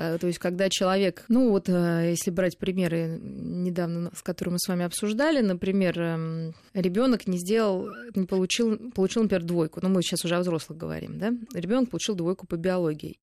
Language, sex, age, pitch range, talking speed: Russian, female, 20-39, 170-210 Hz, 175 wpm